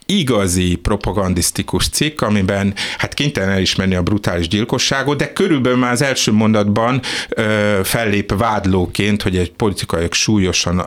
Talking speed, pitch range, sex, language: 135 wpm, 95-125 Hz, male, Hungarian